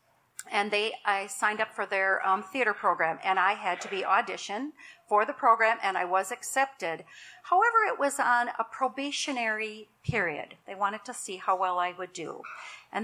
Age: 50-69